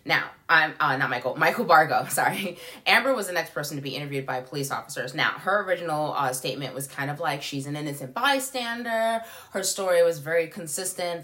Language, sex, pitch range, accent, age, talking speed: English, female, 140-190 Hz, American, 20-39, 200 wpm